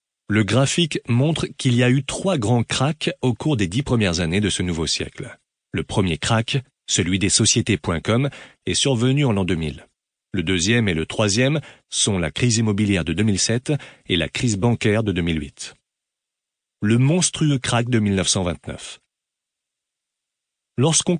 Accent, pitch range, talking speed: French, 95-140 Hz, 155 wpm